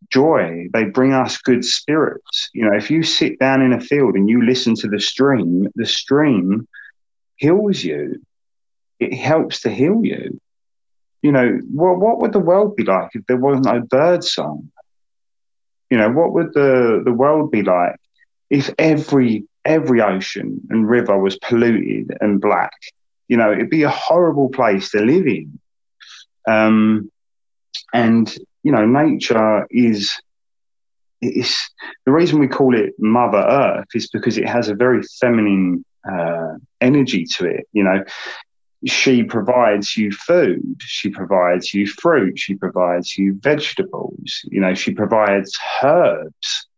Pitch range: 100-135 Hz